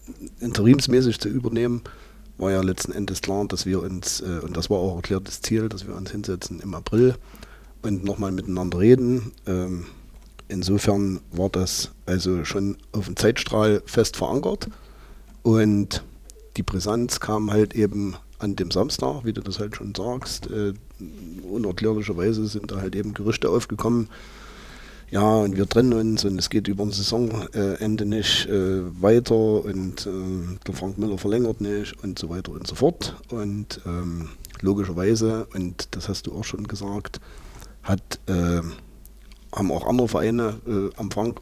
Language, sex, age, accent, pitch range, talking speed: German, male, 40-59, German, 95-110 Hz, 155 wpm